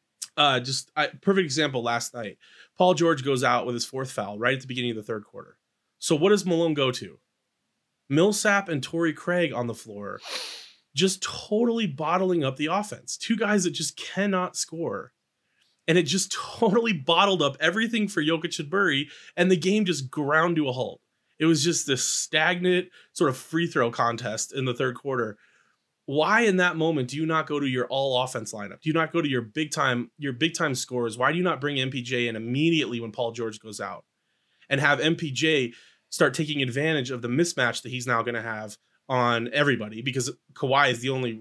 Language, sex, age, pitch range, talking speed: English, male, 20-39, 125-170 Hz, 200 wpm